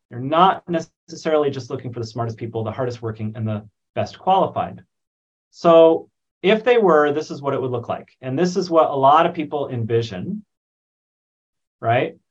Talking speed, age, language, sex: 180 wpm, 30-49, English, male